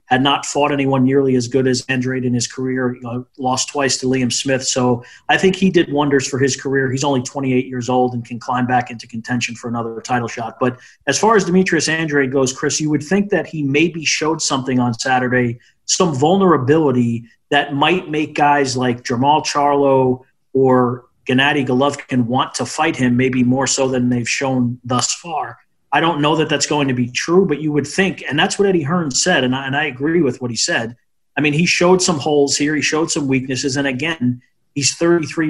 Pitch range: 125-150 Hz